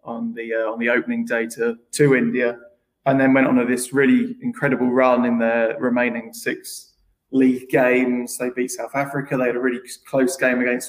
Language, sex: English, male